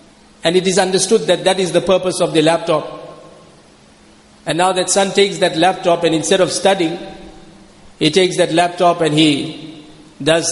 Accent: South African